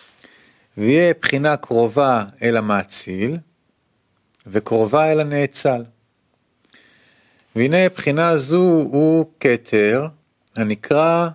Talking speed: 75 wpm